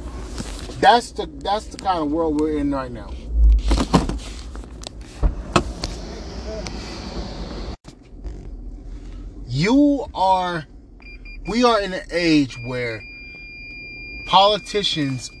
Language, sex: English, male